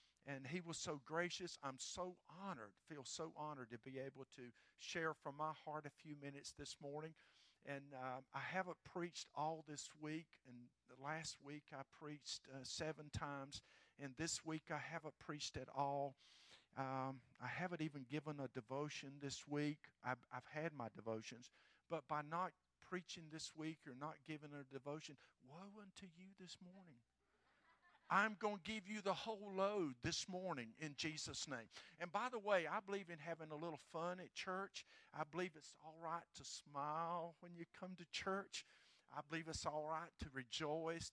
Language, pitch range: English, 140-180 Hz